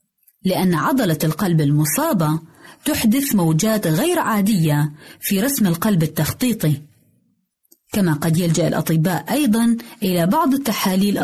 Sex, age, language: female, 30-49, Arabic